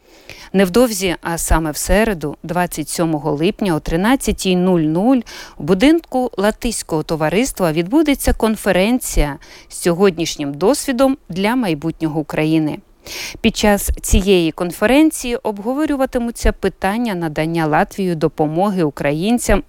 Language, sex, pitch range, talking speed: Ukrainian, female, 160-220 Hz, 95 wpm